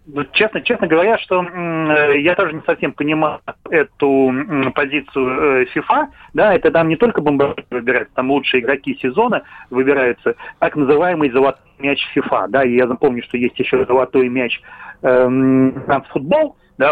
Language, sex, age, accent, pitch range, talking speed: Russian, male, 30-49, native, 130-165 Hz, 155 wpm